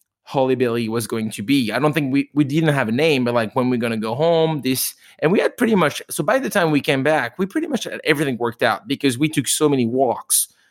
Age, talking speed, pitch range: 30-49, 270 wpm, 125-150 Hz